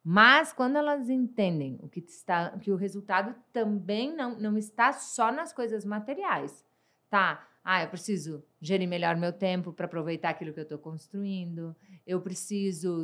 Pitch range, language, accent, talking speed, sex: 175-200 Hz, Portuguese, Brazilian, 155 wpm, female